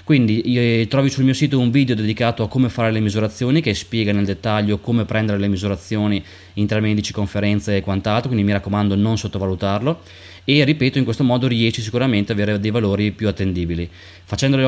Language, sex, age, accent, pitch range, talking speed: Italian, male, 20-39, native, 105-125 Hz, 190 wpm